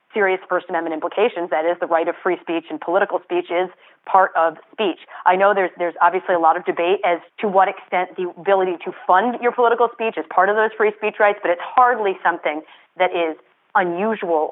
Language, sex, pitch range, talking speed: English, female, 175-230 Hz, 215 wpm